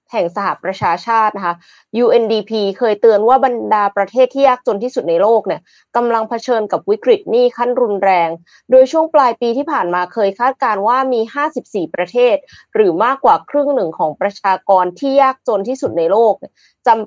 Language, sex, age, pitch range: Thai, female, 20-39, 190-265 Hz